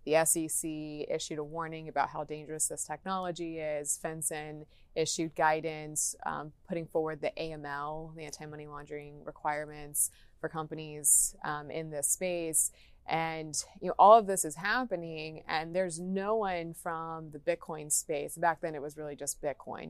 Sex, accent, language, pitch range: female, American, English, 150-170 Hz